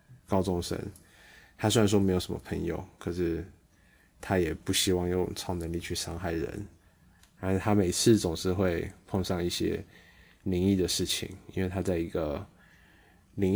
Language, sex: Chinese, male